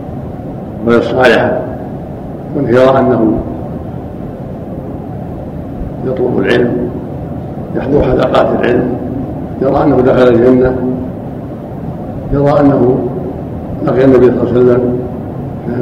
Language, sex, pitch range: Arabic, male, 125-140 Hz